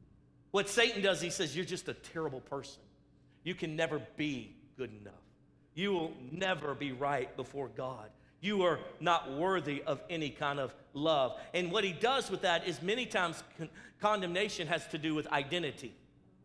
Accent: American